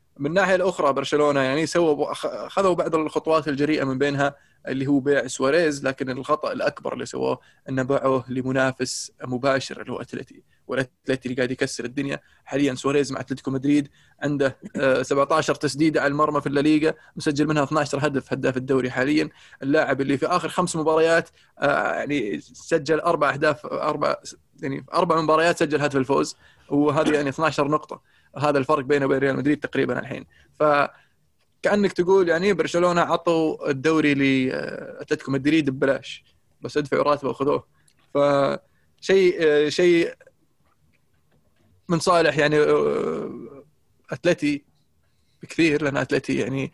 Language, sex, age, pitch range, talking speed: Arabic, male, 20-39, 135-155 Hz, 140 wpm